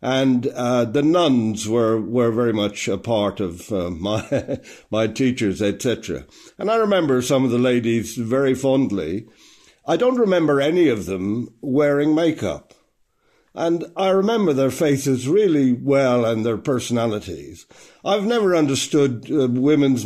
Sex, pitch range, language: male, 120-170 Hz, English